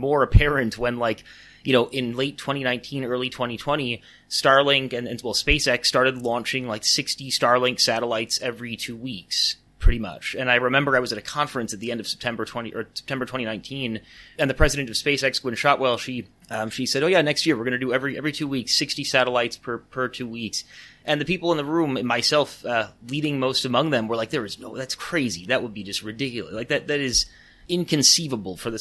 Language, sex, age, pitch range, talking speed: English, male, 30-49, 115-135 Hz, 215 wpm